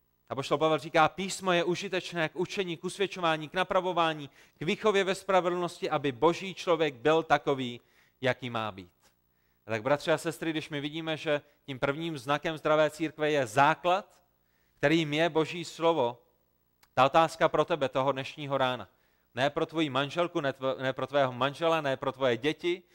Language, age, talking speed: Czech, 30-49, 170 wpm